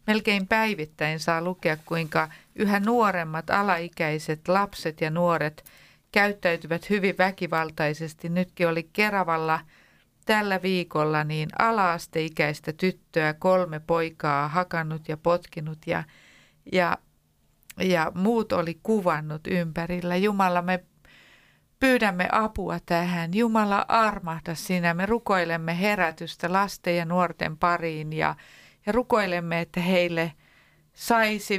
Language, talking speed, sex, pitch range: Finnish, 100 wpm, female, 165-195 Hz